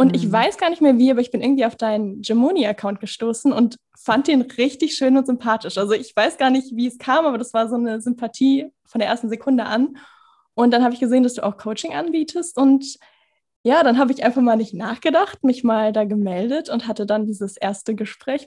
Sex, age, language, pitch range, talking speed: female, 10-29, German, 210-255 Hz, 225 wpm